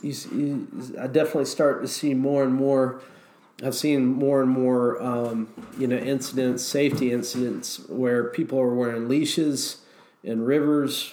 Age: 40-59